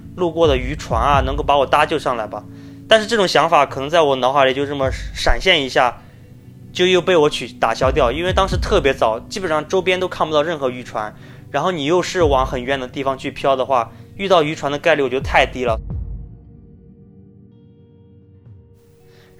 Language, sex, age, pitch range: Chinese, male, 20-39, 130-175 Hz